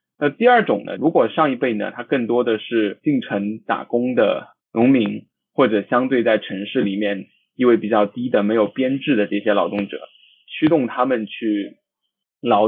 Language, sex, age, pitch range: Chinese, male, 20-39, 110-145 Hz